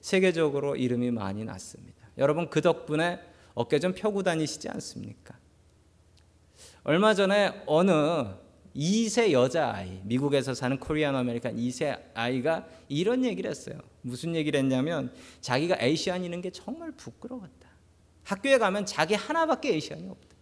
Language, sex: Korean, male